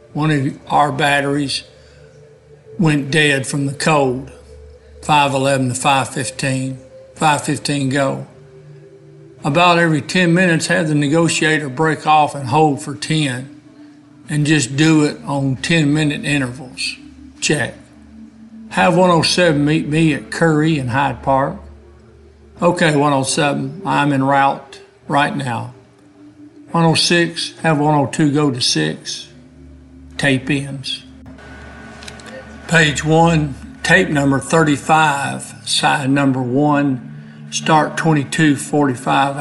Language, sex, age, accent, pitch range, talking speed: English, male, 60-79, American, 130-155 Hz, 105 wpm